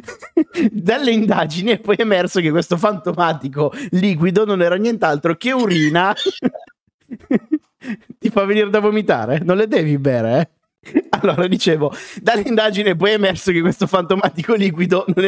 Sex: male